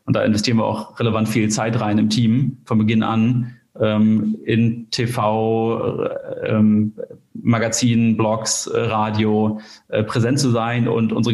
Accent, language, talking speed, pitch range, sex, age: German, German, 155 wpm, 110-120 Hz, male, 30-49